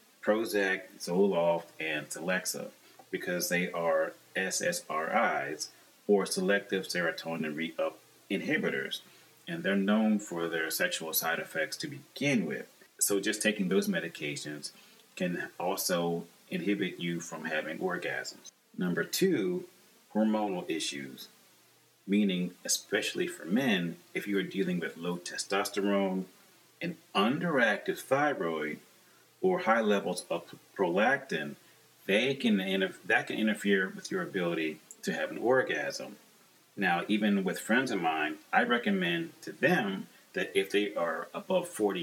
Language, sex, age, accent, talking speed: English, male, 30-49, American, 120 wpm